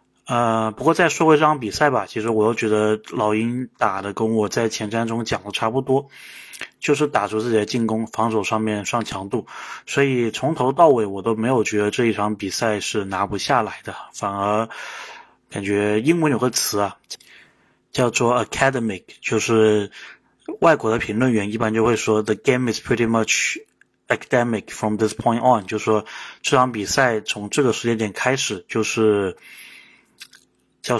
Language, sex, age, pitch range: Chinese, male, 20-39, 105-125 Hz